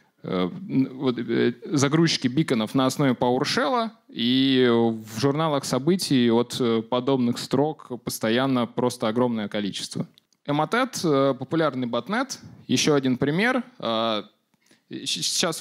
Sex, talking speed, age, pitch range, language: male, 90 wpm, 20-39, 115-145 Hz, Russian